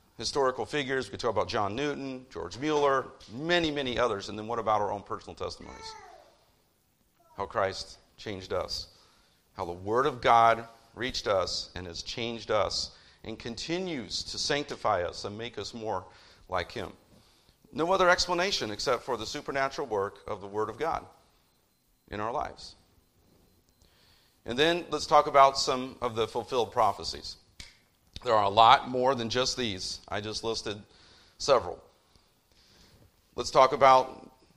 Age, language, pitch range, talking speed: 40-59, English, 105-140 Hz, 150 wpm